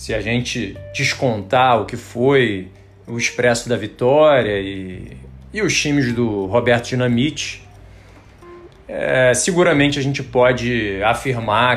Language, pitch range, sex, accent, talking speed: Portuguese, 100-135 Hz, male, Brazilian, 120 wpm